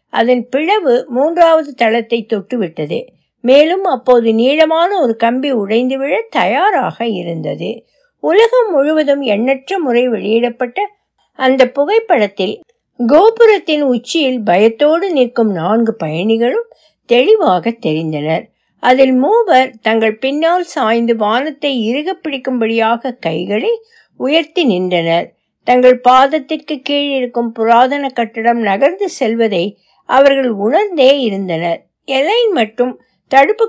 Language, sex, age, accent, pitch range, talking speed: Tamil, female, 60-79, native, 220-300 Hz, 70 wpm